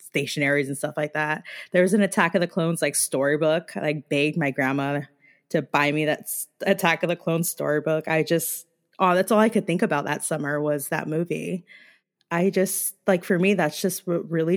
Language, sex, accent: English, female, American